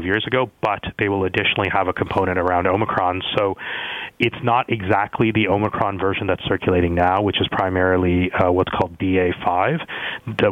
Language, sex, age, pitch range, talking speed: English, male, 30-49, 90-105 Hz, 170 wpm